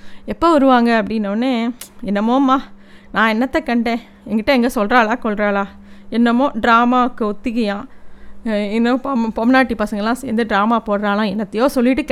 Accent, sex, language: native, female, Tamil